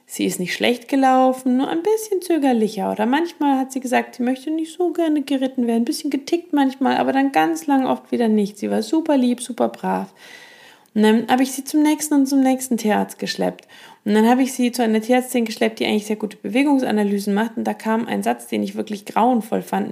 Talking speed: 225 wpm